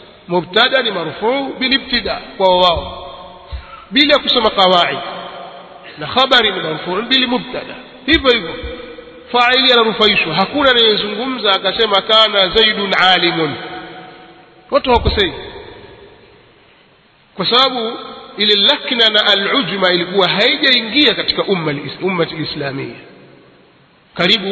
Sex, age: male, 50-69